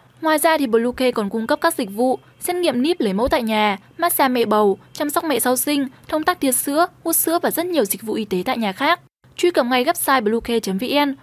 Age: 10-29